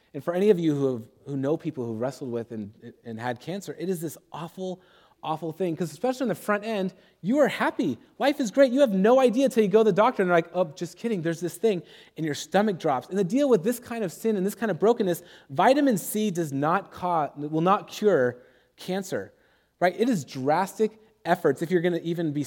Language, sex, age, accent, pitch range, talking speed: English, male, 30-49, American, 135-195 Hz, 245 wpm